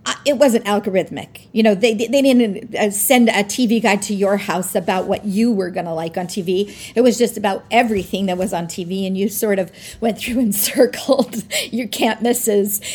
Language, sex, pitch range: English, female, 200-250 Hz